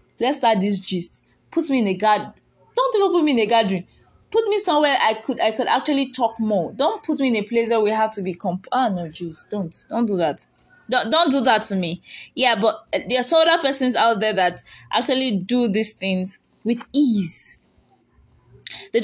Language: English